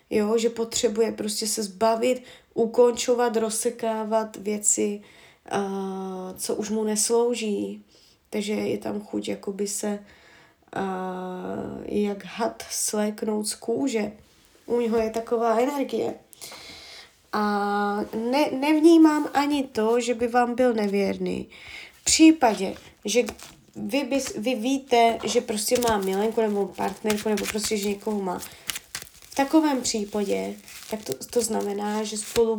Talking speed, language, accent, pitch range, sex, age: 125 wpm, Czech, native, 205-240 Hz, female, 20-39